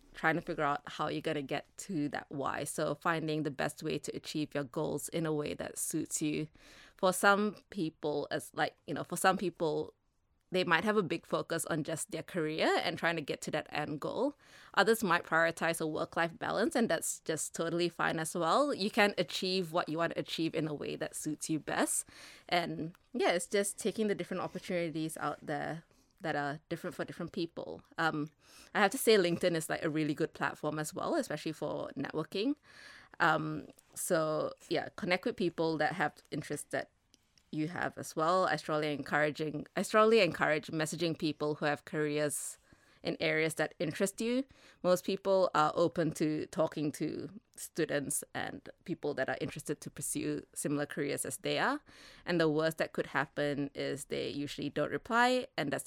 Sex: female